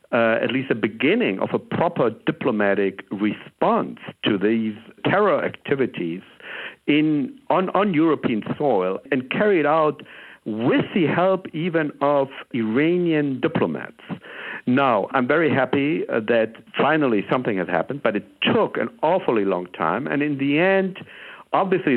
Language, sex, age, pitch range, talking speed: English, male, 60-79, 105-130 Hz, 135 wpm